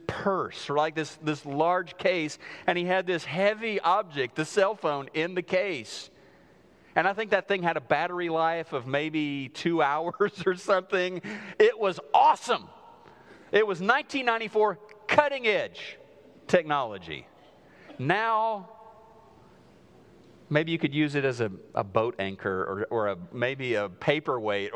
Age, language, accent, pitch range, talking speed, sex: 40-59, English, American, 140-195 Hz, 140 wpm, male